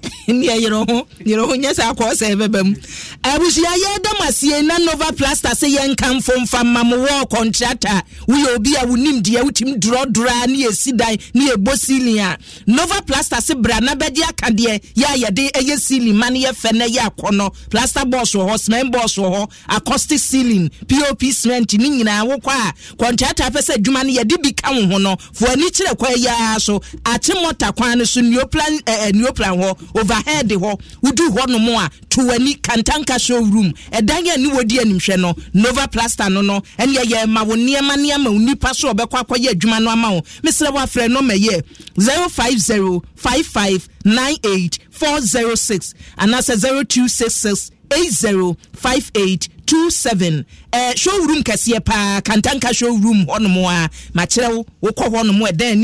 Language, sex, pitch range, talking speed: English, male, 215-270 Hz, 150 wpm